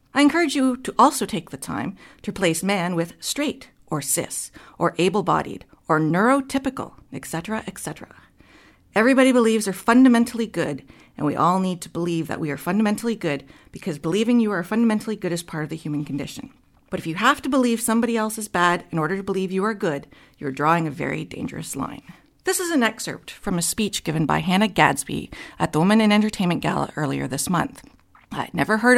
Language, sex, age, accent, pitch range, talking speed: English, female, 40-59, American, 165-225 Hz, 195 wpm